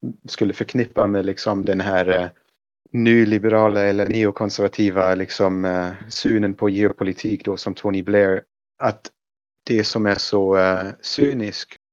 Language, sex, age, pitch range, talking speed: Swedish, male, 30-49, 95-110 Hz, 125 wpm